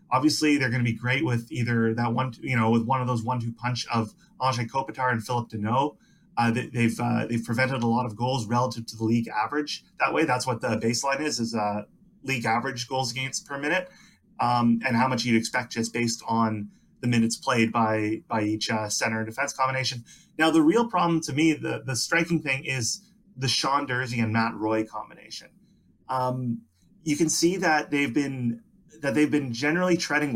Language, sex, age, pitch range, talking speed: English, male, 30-49, 115-145 Hz, 205 wpm